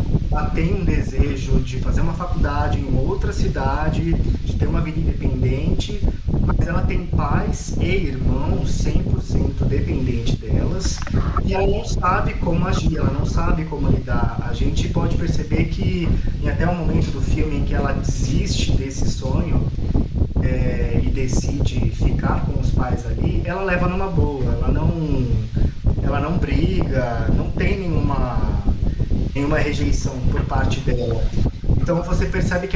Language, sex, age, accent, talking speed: Portuguese, male, 20-39, Brazilian, 155 wpm